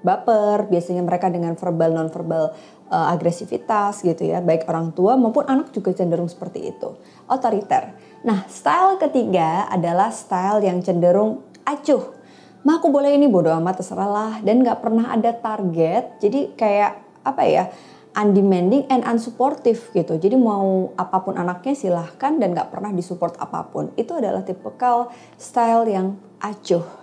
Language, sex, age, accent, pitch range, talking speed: Indonesian, female, 20-39, native, 180-235 Hz, 145 wpm